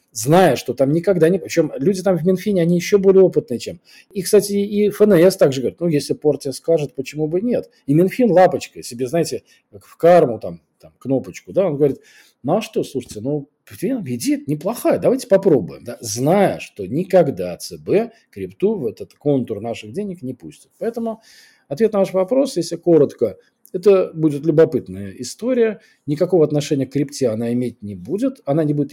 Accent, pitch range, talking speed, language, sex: native, 125-185 Hz, 180 wpm, Russian, male